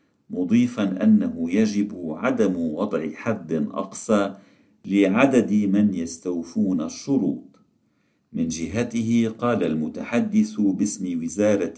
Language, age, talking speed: Arabic, 50-69, 85 wpm